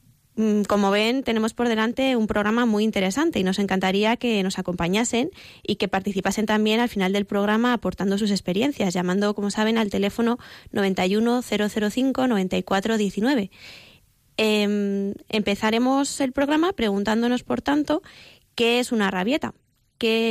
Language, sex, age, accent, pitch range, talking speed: Spanish, female, 20-39, Spanish, 195-235 Hz, 125 wpm